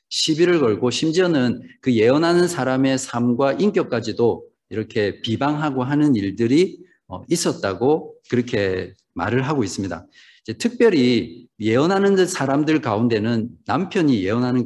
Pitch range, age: 110-145 Hz, 50-69